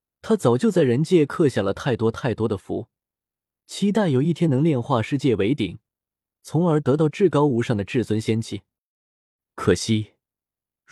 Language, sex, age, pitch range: Chinese, male, 20-39, 115-165 Hz